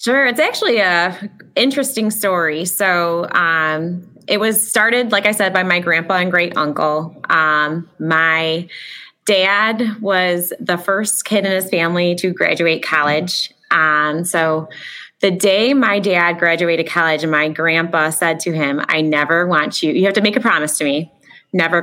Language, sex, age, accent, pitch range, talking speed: English, female, 20-39, American, 160-190 Hz, 165 wpm